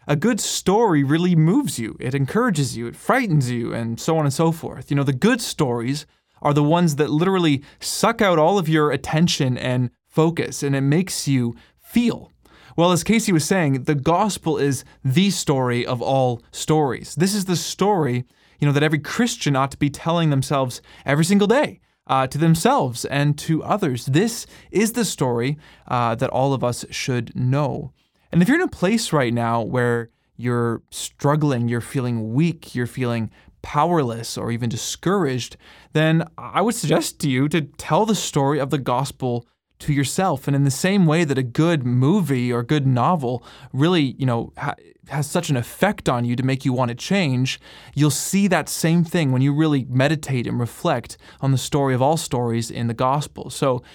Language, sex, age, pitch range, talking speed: English, male, 20-39, 125-165 Hz, 190 wpm